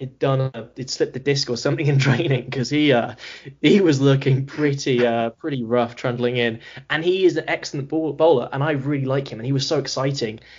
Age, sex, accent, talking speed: 10-29, male, British, 205 wpm